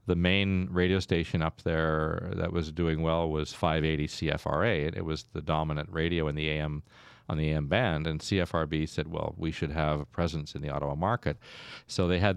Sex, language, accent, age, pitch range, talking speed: male, English, American, 40-59, 80-90 Hz, 185 wpm